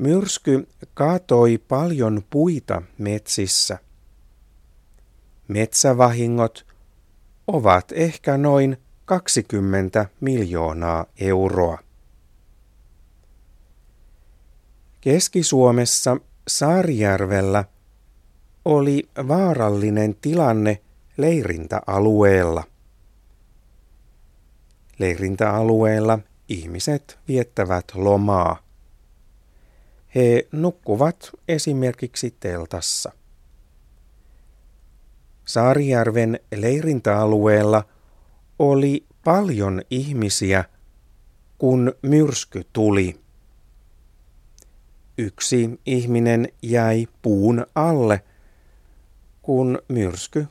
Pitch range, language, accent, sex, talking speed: 90-130 Hz, Finnish, native, male, 50 wpm